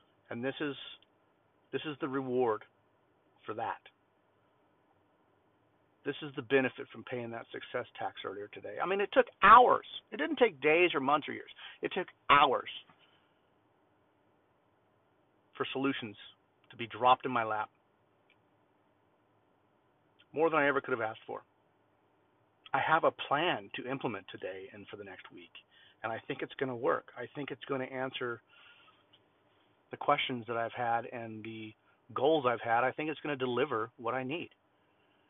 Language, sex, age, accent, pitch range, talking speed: English, male, 50-69, American, 120-165 Hz, 165 wpm